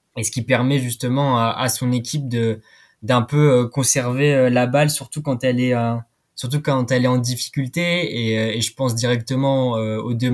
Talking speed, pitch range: 185 wpm, 115-135 Hz